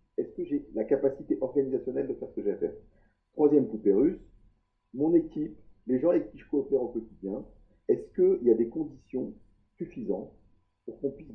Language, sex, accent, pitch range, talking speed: French, male, French, 105-140 Hz, 190 wpm